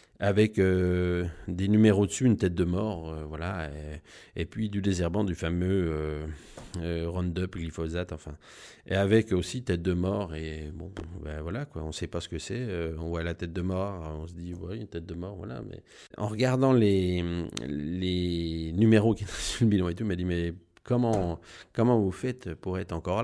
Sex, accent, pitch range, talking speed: male, French, 85-105 Hz, 205 wpm